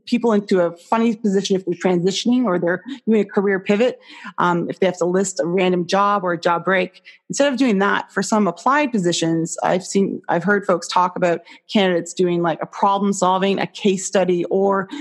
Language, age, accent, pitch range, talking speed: English, 30-49, American, 175-210 Hz, 210 wpm